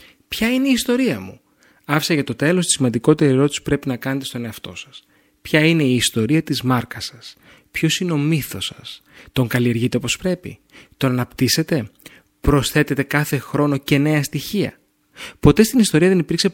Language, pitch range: Greek, 130-175 Hz